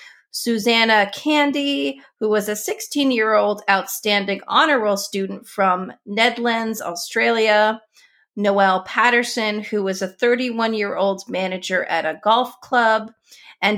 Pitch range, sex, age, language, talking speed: 200-250 Hz, female, 30-49, English, 110 wpm